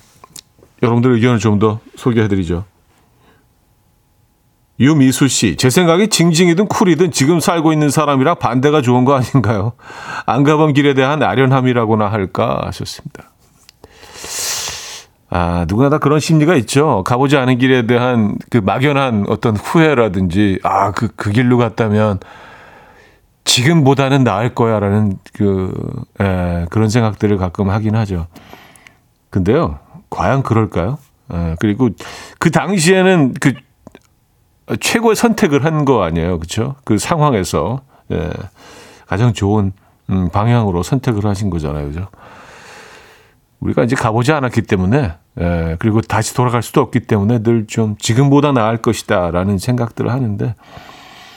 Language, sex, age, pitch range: Korean, male, 40-59, 105-140 Hz